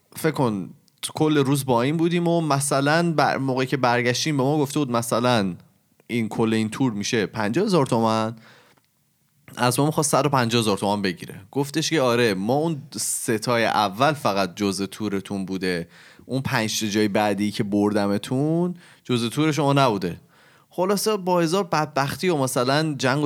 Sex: male